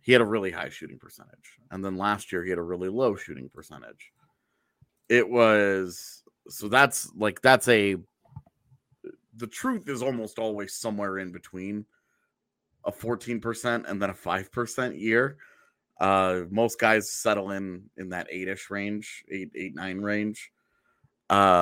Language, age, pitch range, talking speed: English, 30-49, 100-120 Hz, 150 wpm